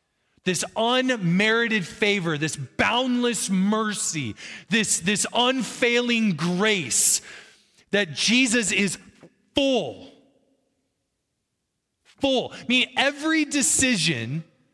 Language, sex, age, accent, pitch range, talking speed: English, male, 30-49, American, 150-225 Hz, 75 wpm